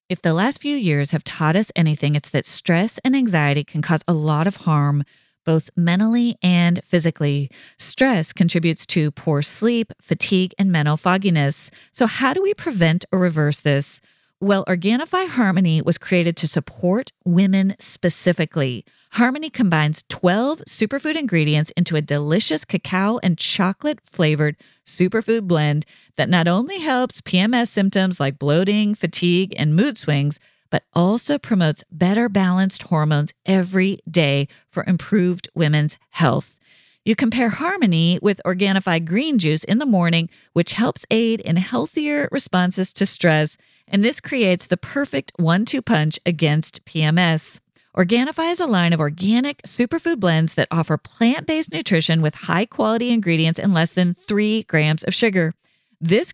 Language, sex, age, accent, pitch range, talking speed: English, female, 40-59, American, 160-215 Hz, 150 wpm